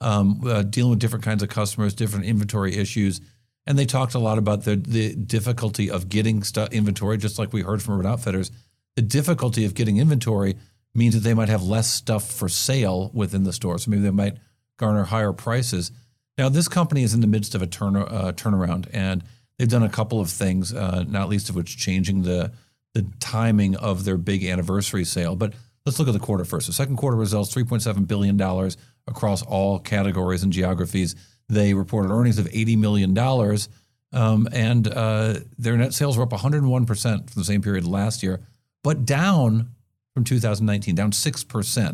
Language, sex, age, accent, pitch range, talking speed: English, male, 50-69, American, 100-120 Hz, 185 wpm